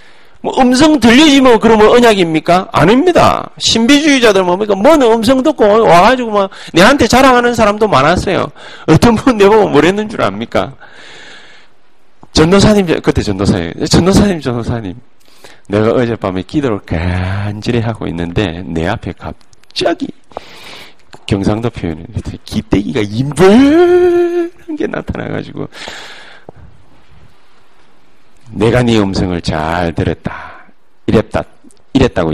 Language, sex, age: Korean, male, 40-59